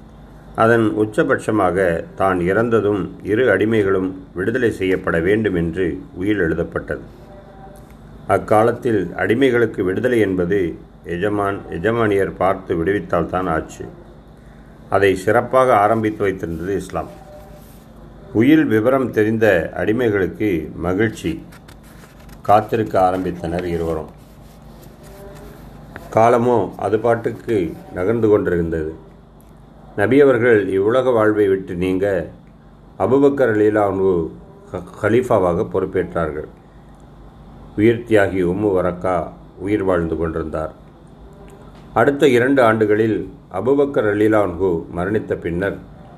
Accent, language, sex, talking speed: native, Tamil, male, 80 wpm